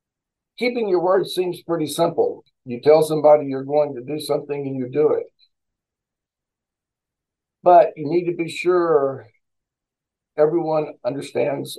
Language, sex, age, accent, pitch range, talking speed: English, male, 60-79, American, 140-185 Hz, 130 wpm